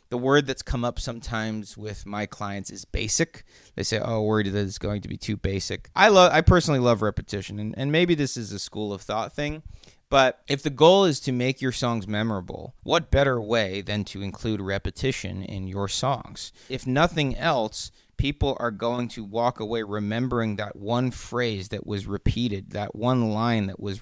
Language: English